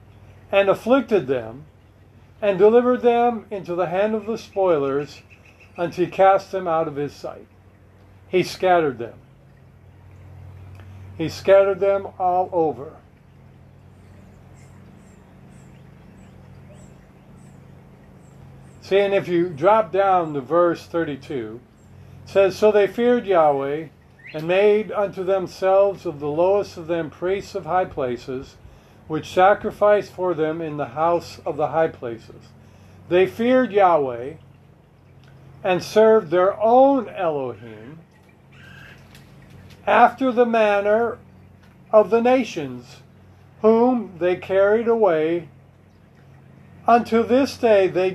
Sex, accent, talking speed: male, American, 110 wpm